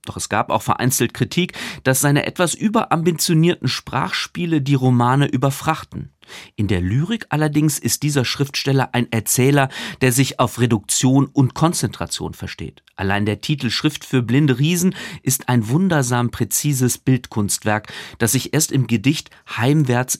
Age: 40-59